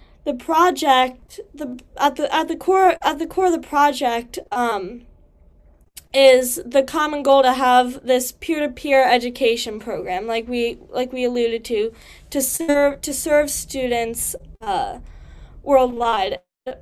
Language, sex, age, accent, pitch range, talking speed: Romanian, female, 10-29, American, 240-285 Hz, 145 wpm